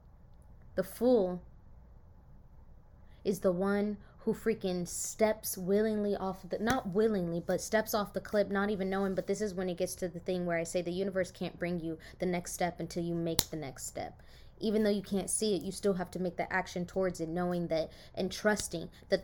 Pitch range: 175-200 Hz